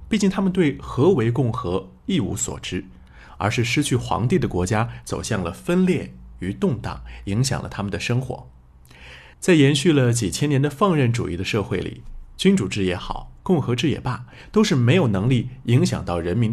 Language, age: Chinese, 30-49